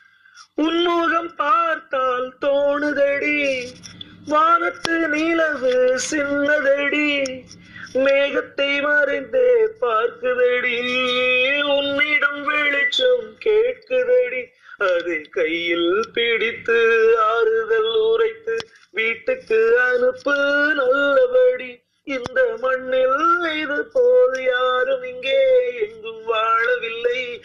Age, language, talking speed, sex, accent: 30-49, Tamil, 60 wpm, male, native